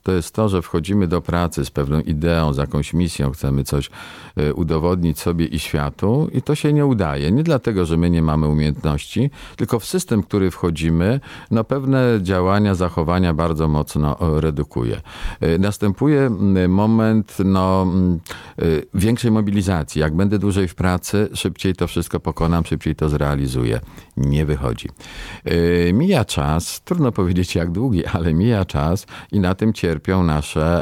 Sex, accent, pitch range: male, native, 80-100 Hz